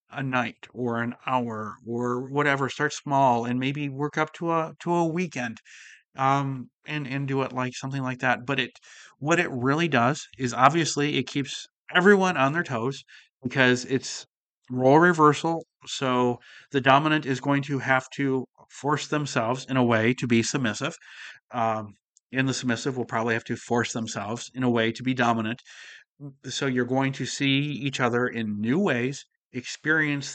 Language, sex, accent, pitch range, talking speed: English, male, American, 120-145 Hz, 175 wpm